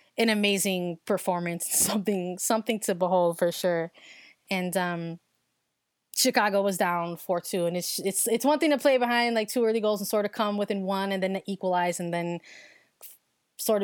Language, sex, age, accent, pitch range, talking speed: English, female, 20-39, American, 180-220 Hz, 180 wpm